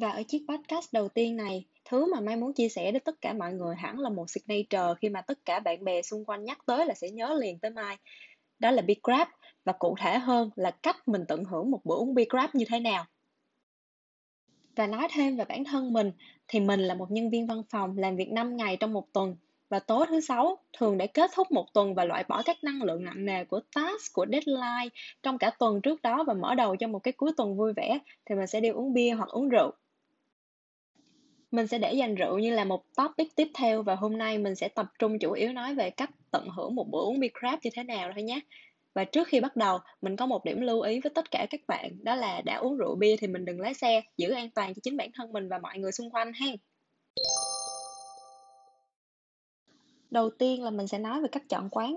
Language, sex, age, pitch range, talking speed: Vietnamese, female, 10-29, 195-270 Hz, 245 wpm